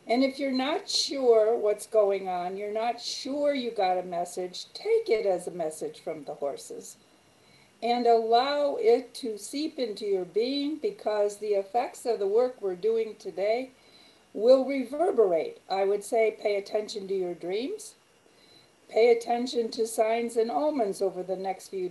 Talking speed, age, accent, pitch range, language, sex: 165 wpm, 50-69, American, 205-260 Hz, English, female